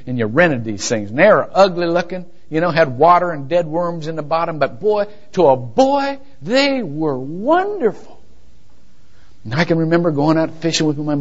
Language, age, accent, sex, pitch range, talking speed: English, 50-69, American, male, 125-210 Hz, 200 wpm